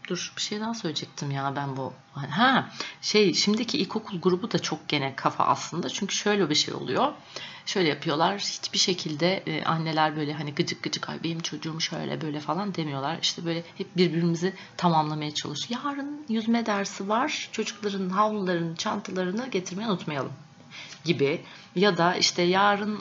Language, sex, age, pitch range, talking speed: Turkish, female, 30-49, 160-205 Hz, 155 wpm